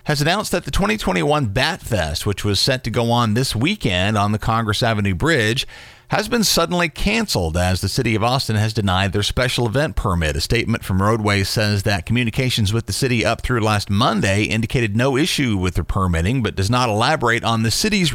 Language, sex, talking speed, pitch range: English, male, 205 wpm, 100-135 Hz